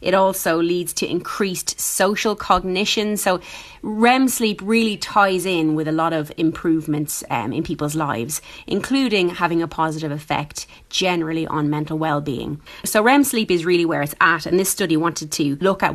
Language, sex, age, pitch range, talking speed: English, female, 30-49, 160-200 Hz, 175 wpm